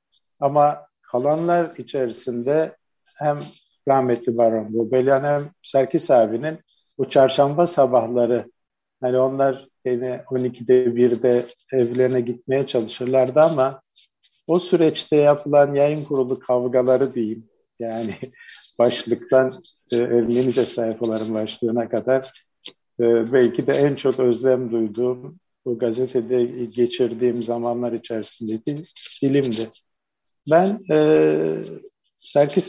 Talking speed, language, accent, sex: 95 wpm, Turkish, native, male